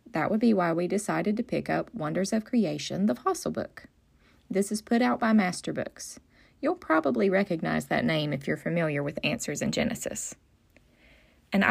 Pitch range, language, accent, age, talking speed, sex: 170-225 Hz, English, American, 20-39, 175 wpm, female